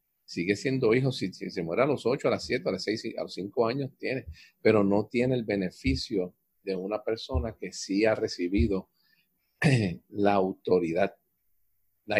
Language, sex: Spanish, male